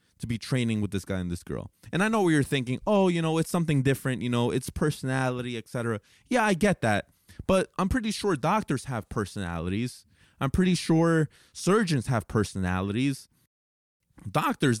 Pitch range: 105-145 Hz